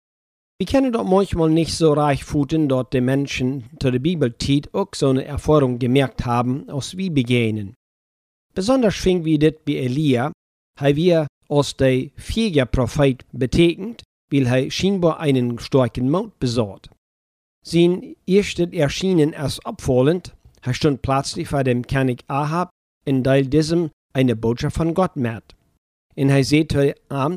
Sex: male